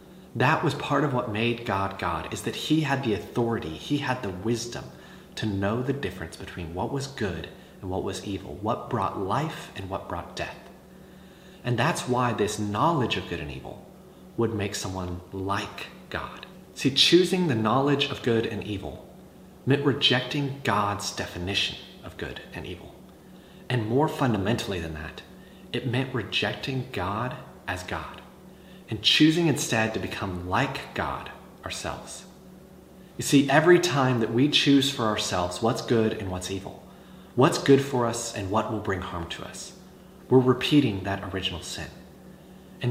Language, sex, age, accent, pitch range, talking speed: English, male, 30-49, American, 100-135 Hz, 165 wpm